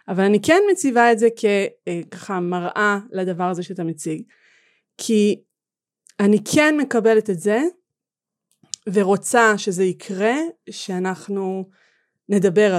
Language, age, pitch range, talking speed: Hebrew, 30-49, 180-230 Hz, 110 wpm